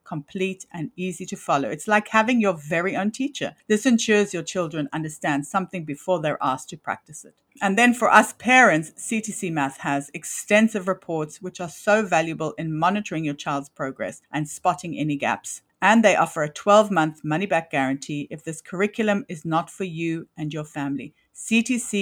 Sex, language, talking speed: female, English, 175 wpm